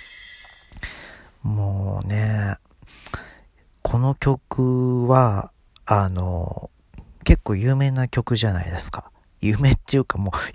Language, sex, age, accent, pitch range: Japanese, male, 40-59, native, 95-130 Hz